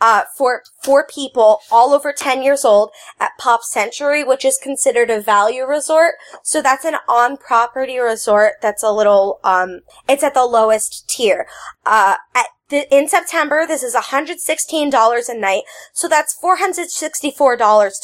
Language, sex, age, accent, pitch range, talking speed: English, female, 10-29, American, 220-300 Hz, 150 wpm